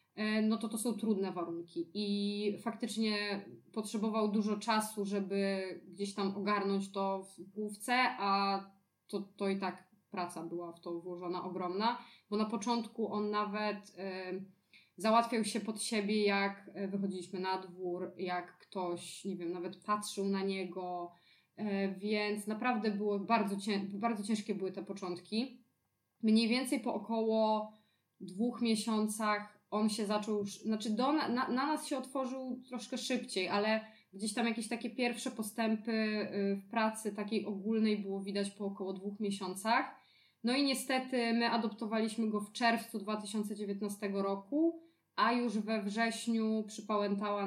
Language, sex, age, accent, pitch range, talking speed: Polish, female, 20-39, native, 195-230 Hz, 140 wpm